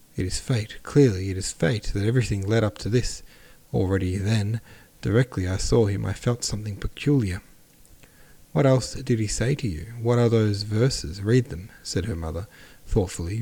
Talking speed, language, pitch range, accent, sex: 180 wpm, English, 95-115 Hz, Australian, male